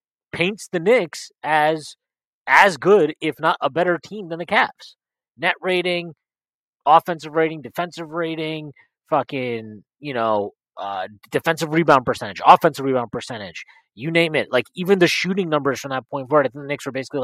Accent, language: American, English